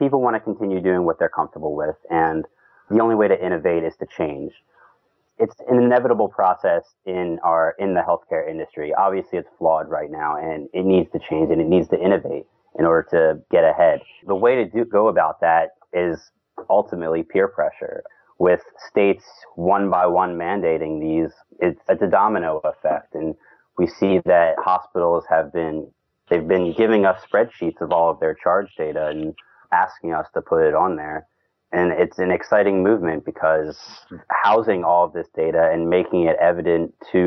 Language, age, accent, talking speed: English, 30-49, American, 180 wpm